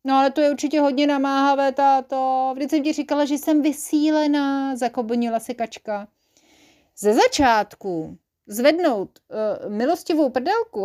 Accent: native